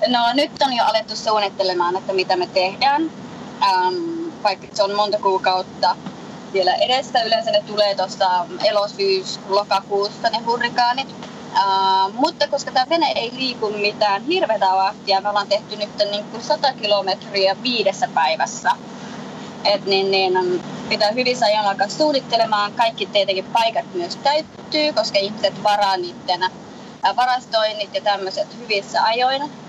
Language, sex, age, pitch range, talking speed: Finnish, female, 20-39, 195-235 Hz, 135 wpm